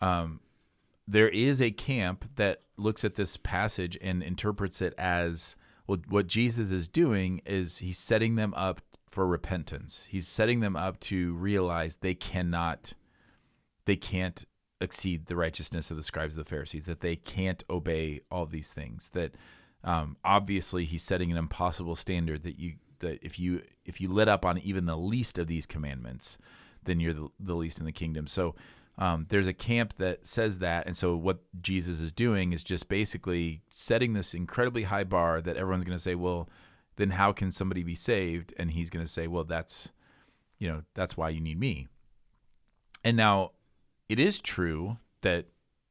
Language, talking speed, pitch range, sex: English, 180 wpm, 85-100 Hz, male